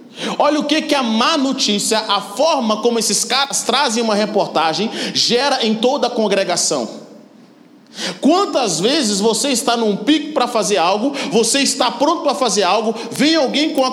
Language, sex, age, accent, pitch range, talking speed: Portuguese, male, 40-59, Brazilian, 220-280 Hz, 170 wpm